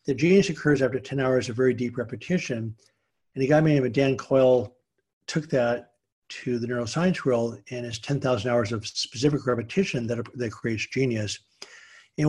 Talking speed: 165 wpm